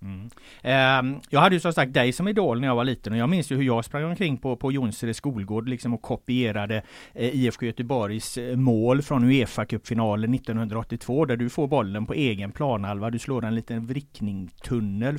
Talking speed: 195 wpm